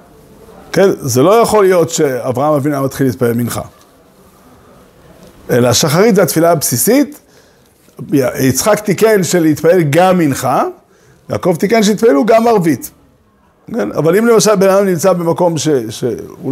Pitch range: 140-200 Hz